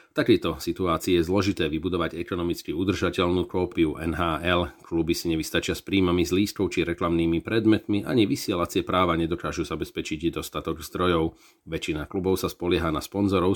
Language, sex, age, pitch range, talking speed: Slovak, male, 40-59, 85-95 Hz, 140 wpm